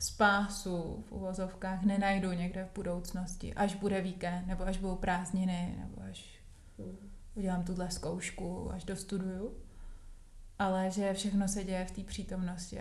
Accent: native